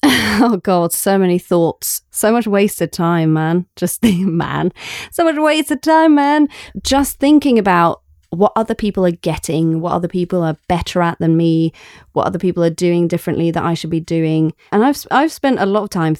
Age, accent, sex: 30-49, British, female